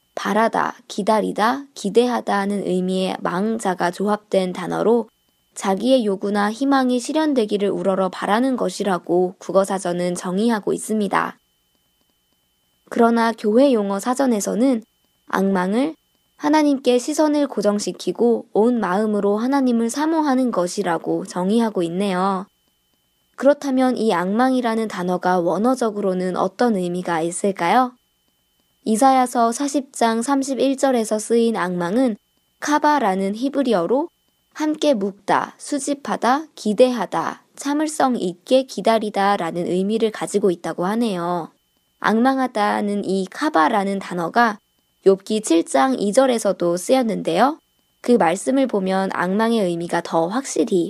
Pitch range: 180-250 Hz